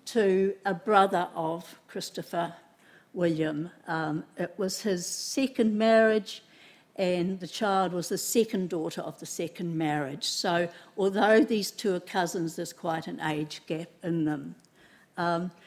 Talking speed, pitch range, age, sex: 140 wpm, 170-215 Hz, 60-79, female